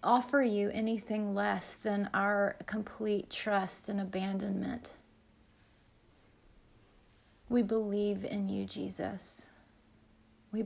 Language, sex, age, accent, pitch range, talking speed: English, female, 30-49, American, 185-220 Hz, 90 wpm